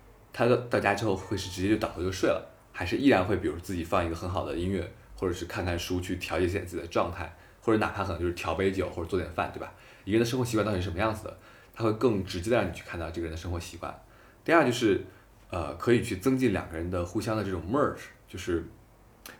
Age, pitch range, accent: 20-39, 90-110 Hz, native